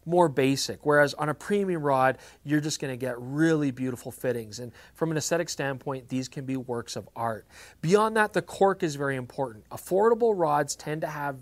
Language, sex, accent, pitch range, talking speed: English, male, American, 130-175 Hz, 195 wpm